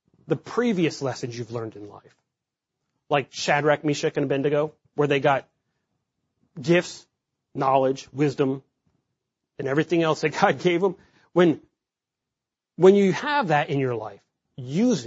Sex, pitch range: male, 140-180 Hz